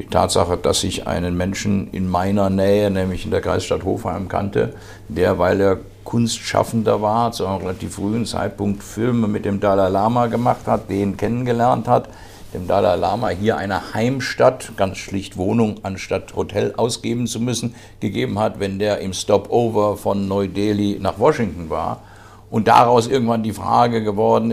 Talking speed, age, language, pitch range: 160 wpm, 50-69, German, 100-115 Hz